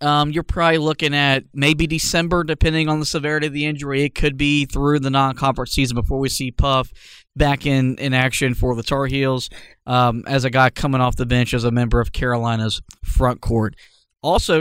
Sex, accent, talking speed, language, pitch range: male, American, 200 wpm, English, 130-155 Hz